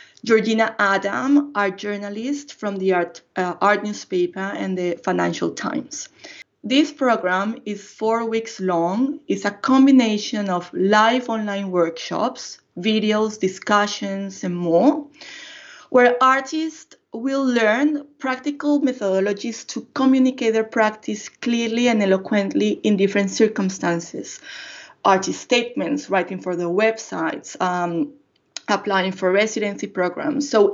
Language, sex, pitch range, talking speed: English, female, 195-265 Hz, 115 wpm